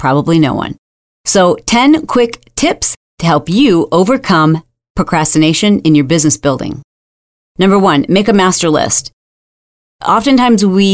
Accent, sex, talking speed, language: American, female, 130 wpm, English